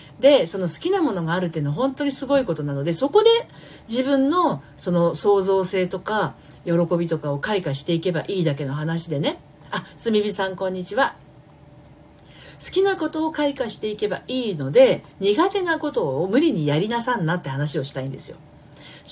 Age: 50-69